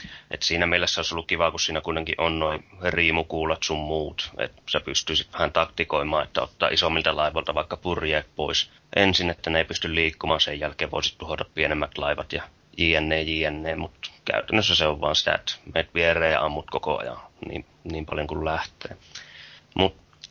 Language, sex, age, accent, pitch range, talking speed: Finnish, male, 30-49, native, 80-85 Hz, 175 wpm